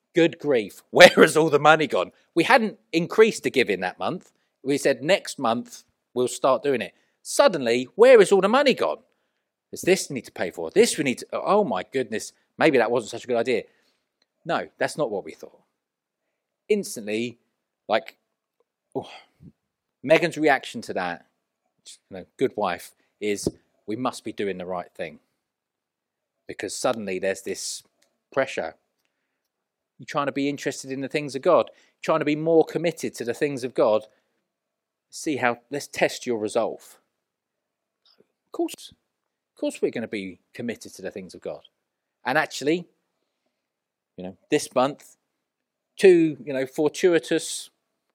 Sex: male